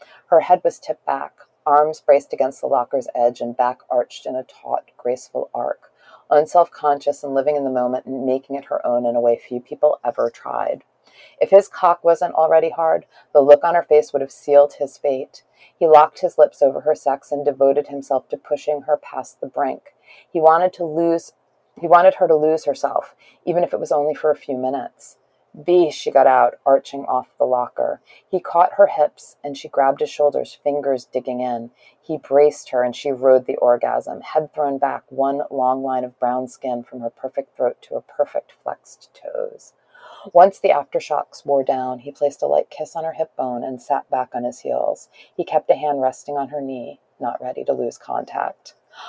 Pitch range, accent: 130-165 Hz, American